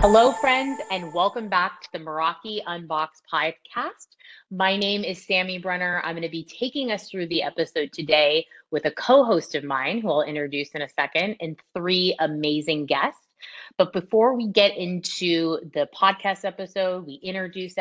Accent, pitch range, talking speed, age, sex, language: American, 160-195 Hz, 170 wpm, 30-49, female, English